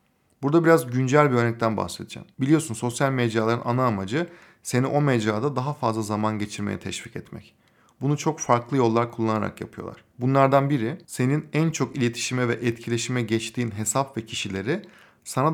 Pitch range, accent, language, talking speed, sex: 110-140 Hz, native, Turkish, 150 wpm, male